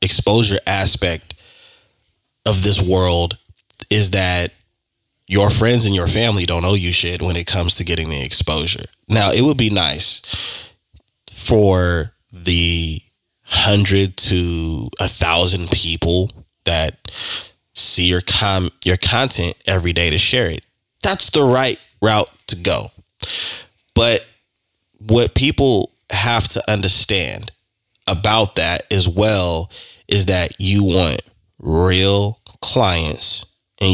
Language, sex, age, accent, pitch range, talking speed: English, male, 20-39, American, 85-105 Hz, 120 wpm